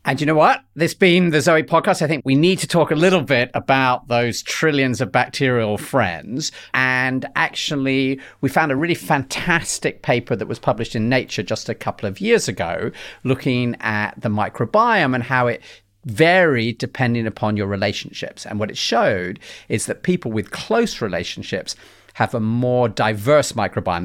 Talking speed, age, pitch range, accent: 175 wpm, 40-59, 100-150 Hz, British